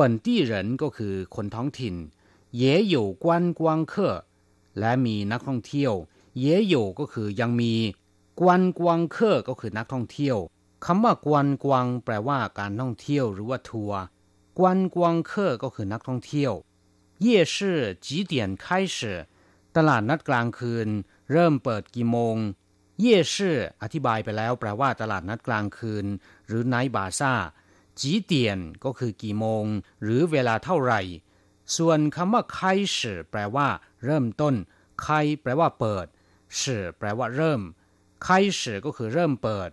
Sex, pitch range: male, 100-145 Hz